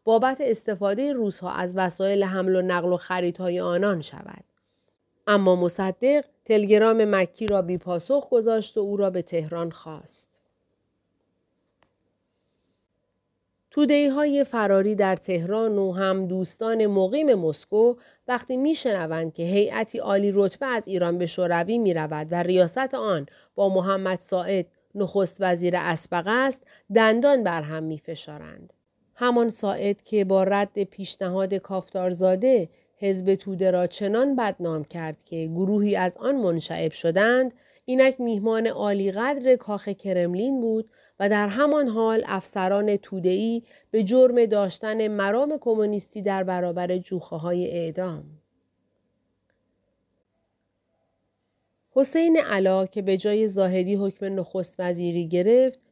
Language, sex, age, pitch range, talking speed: Persian, female, 40-59, 180-225 Hz, 120 wpm